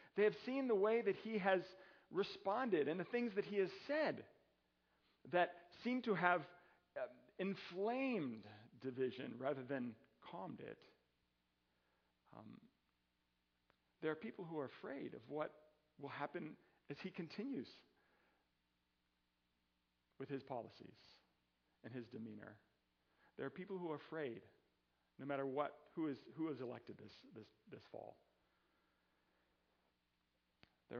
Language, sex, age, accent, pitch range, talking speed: English, male, 40-59, American, 120-180 Hz, 130 wpm